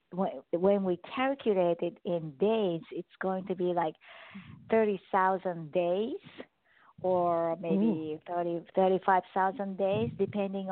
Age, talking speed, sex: 50-69, 130 wpm, female